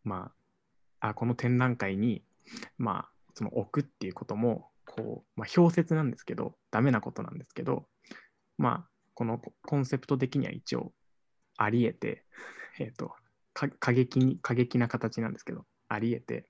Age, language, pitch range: 20-39, Japanese, 110-130 Hz